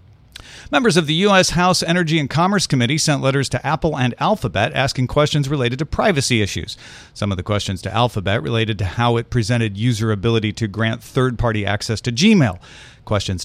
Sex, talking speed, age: male, 185 wpm, 40-59